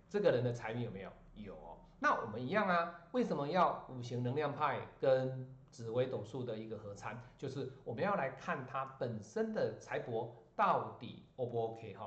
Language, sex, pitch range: Chinese, male, 115-175 Hz